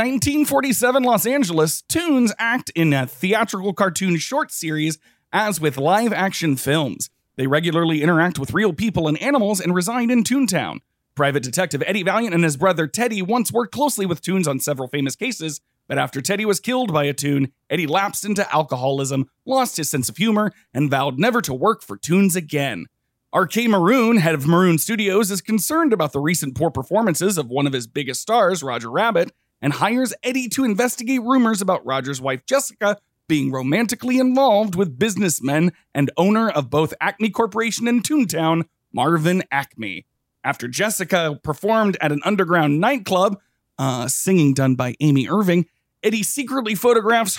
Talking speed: 165 wpm